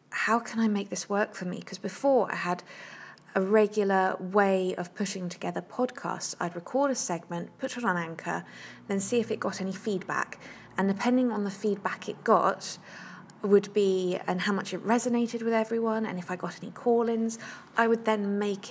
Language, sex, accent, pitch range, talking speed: English, female, British, 185-215 Hz, 190 wpm